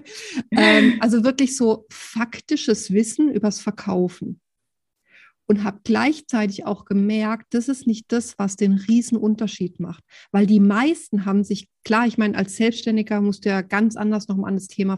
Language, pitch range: German, 200-240 Hz